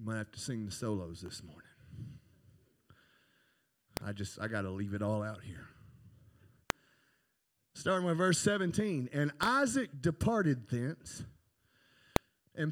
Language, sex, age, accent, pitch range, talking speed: English, male, 40-59, American, 120-185 Hz, 125 wpm